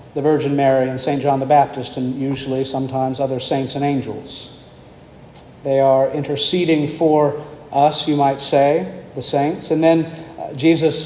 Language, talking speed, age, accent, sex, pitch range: English, 150 wpm, 50-69, American, male, 140-165 Hz